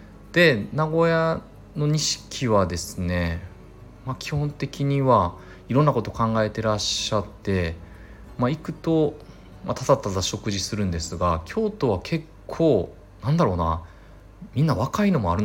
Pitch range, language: 90-130 Hz, Japanese